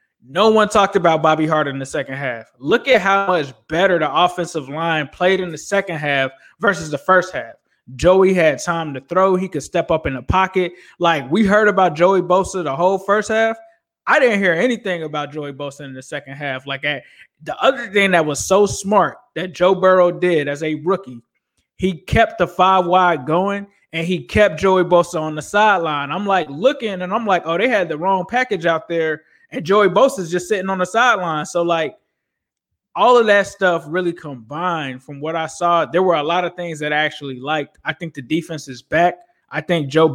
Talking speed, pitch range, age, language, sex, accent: 210 wpm, 155-195 Hz, 20-39, English, male, American